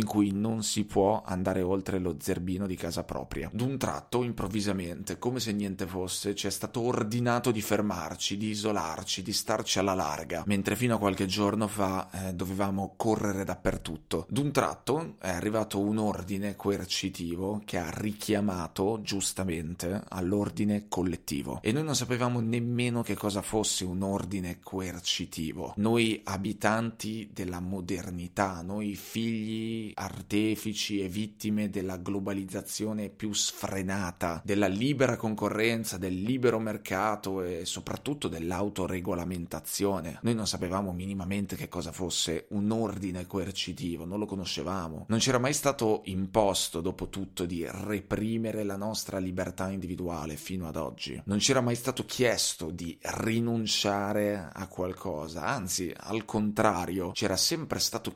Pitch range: 95-110 Hz